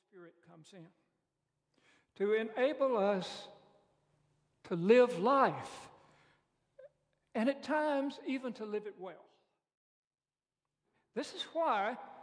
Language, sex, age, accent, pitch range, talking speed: English, male, 60-79, American, 185-240 Hz, 95 wpm